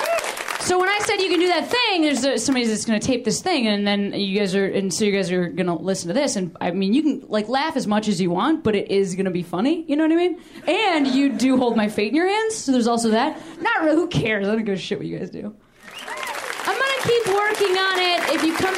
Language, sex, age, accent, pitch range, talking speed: English, female, 20-39, American, 190-285 Hz, 295 wpm